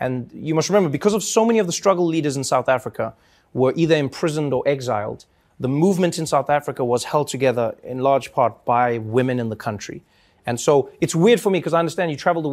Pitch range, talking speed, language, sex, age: 130-180 Hz, 230 wpm, English, male, 30-49